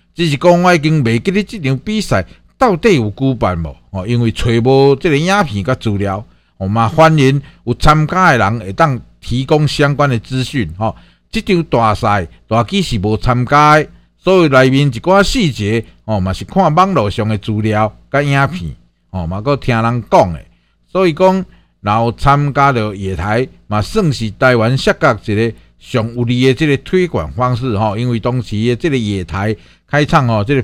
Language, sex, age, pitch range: Chinese, male, 50-69, 105-150 Hz